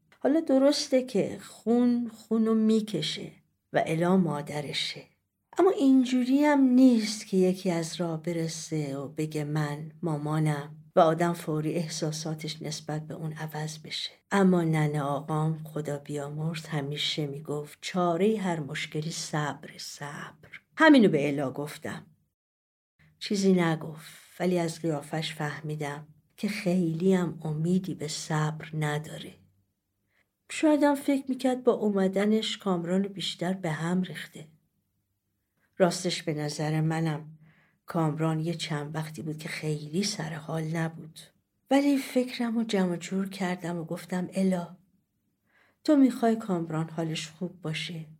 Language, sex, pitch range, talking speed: Persian, female, 155-190 Hz, 125 wpm